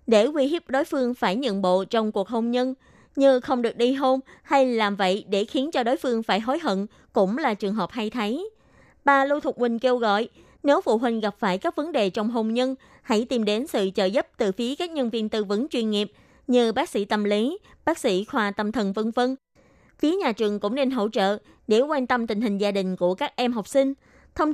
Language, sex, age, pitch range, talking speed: Vietnamese, female, 20-39, 210-265 Hz, 240 wpm